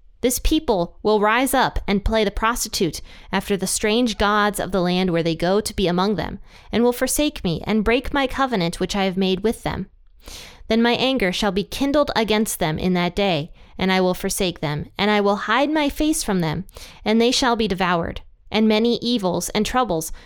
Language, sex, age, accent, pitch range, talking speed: English, female, 20-39, American, 180-245 Hz, 210 wpm